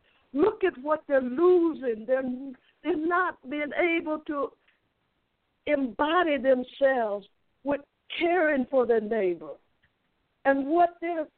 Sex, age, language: female, 60-79, English